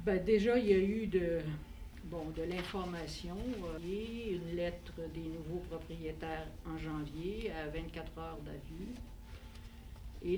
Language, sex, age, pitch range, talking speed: French, female, 60-79, 150-185 Hz, 135 wpm